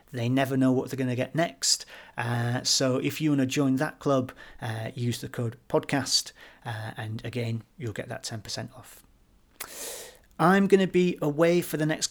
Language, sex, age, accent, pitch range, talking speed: English, male, 40-59, British, 120-145 Hz, 195 wpm